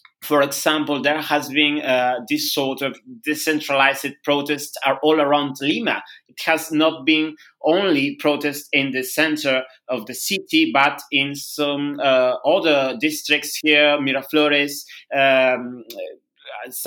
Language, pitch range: English, 130-155 Hz